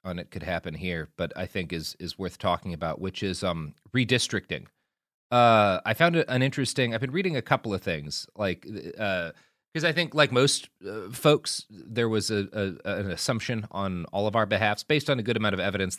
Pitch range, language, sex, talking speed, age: 90-125 Hz, English, male, 215 wpm, 30-49